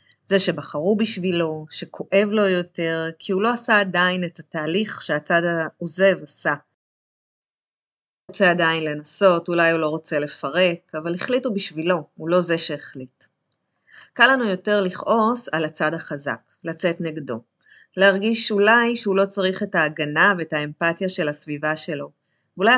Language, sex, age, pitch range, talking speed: Hebrew, female, 30-49, 155-200 Hz, 140 wpm